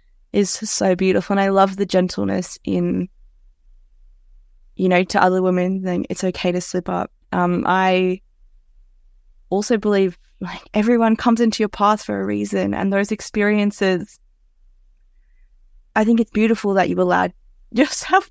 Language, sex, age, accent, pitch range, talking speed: English, female, 20-39, Australian, 180-210 Hz, 145 wpm